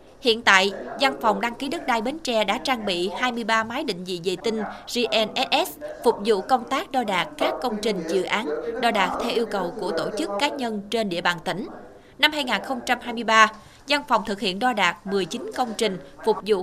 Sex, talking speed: female, 210 wpm